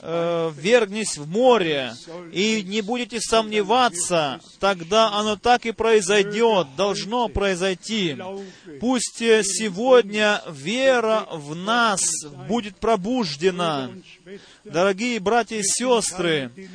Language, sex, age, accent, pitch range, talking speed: Russian, male, 30-49, native, 195-240 Hz, 90 wpm